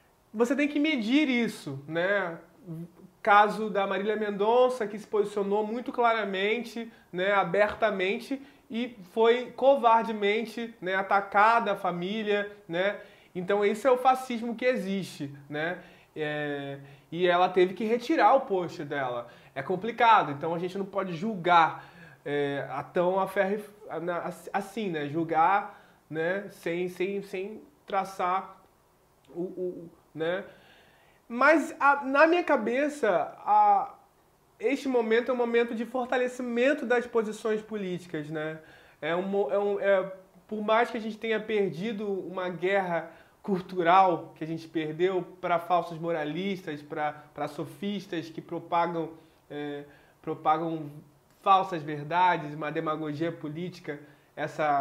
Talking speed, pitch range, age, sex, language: 120 wpm, 165-220 Hz, 20-39, male, Portuguese